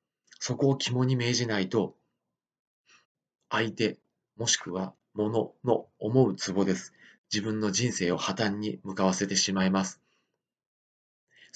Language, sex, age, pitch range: Japanese, male, 40-59, 95-115 Hz